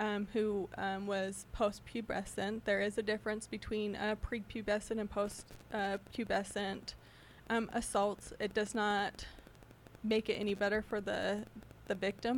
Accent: American